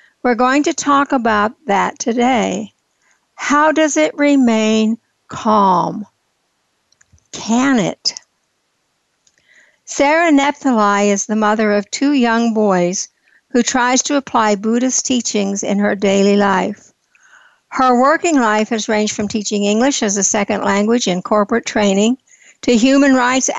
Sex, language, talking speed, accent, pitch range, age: female, English, 130 wpm, American, 210-265 Hz, 60-79